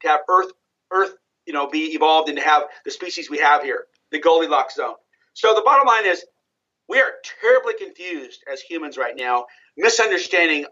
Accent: American